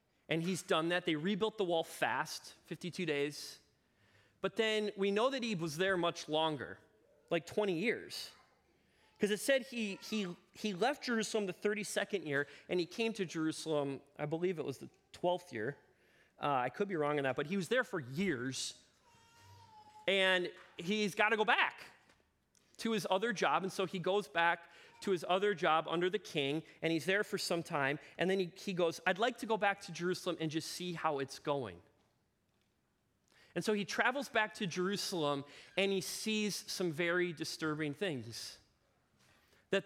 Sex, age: male, 30-49